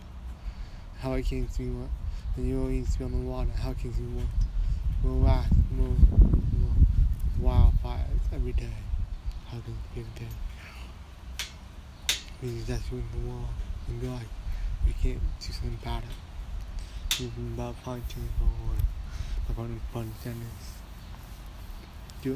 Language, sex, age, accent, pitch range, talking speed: English, male, 20-39, American, 80-120 Hz, 160 wpm